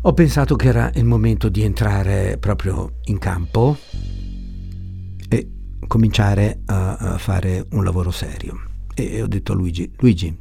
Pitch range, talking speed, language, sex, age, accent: 85-110 Hz, 140 wpm, Italian, male, 60-79, native